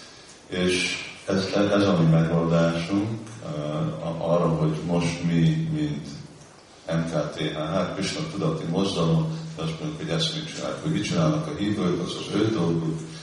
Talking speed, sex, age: 145 wpm, male, 40-59